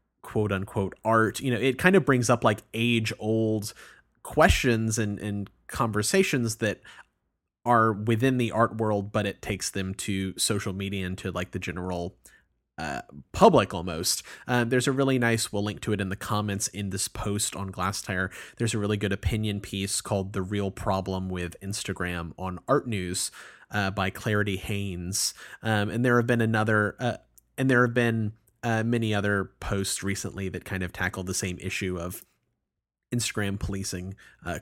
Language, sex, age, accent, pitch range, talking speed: English, male, 30-49, American, 95-115 Hz, 175 wpm